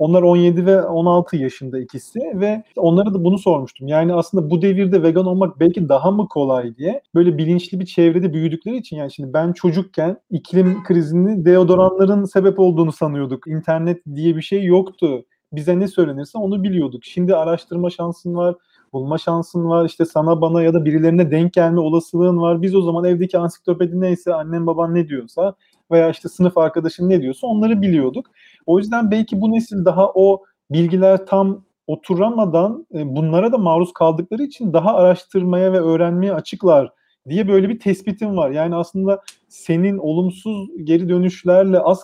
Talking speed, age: 165 wpm, 30-49